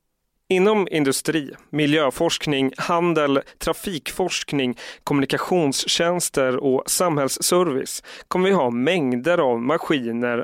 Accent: native